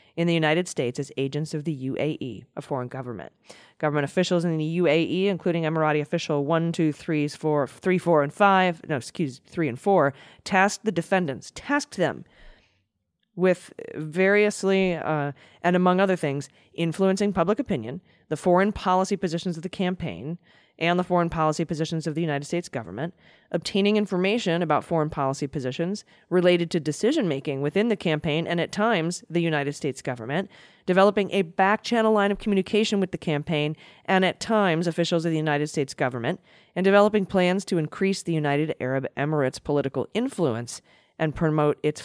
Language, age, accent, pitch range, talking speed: English, 20-39, American, 145-190 Hz, 165 wpm